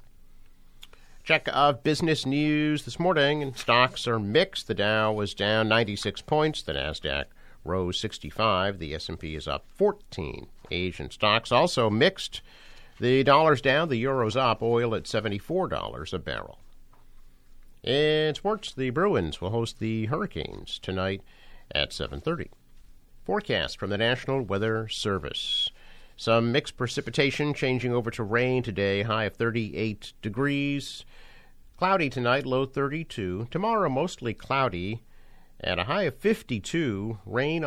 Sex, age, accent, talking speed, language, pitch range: male, 50-69, American, 135 wpm, English, 95-135 Hz